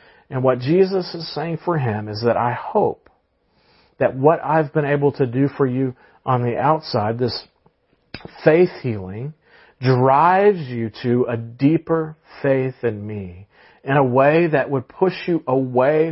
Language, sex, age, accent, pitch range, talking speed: English, male, 40-59, American, 125-160 Hz, 155 wpm